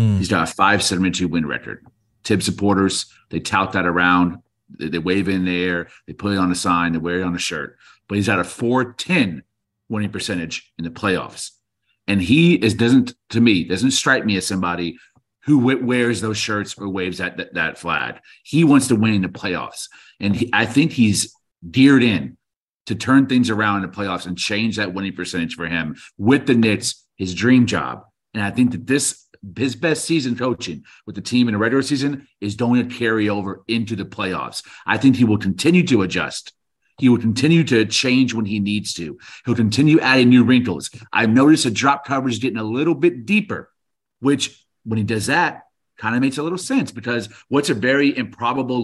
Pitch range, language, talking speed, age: 100-135 Hz, English, 210 wpm, 40-59